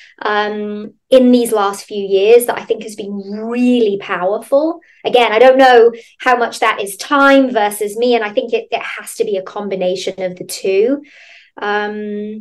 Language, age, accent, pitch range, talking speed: English, 20-39, British, 200-260 Hz, 185 wpm